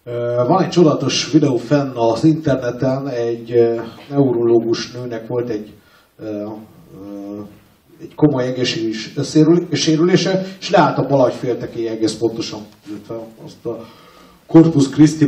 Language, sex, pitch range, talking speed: Hungarian, male, 120-165 Hz, 100 wpm